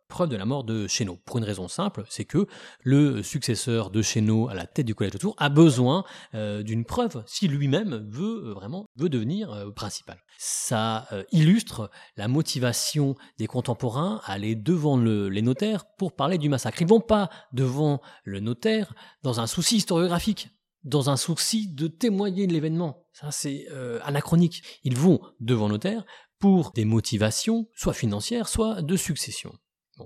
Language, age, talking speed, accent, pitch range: French, 30-49, 175 wpm, French, 110-165 Hz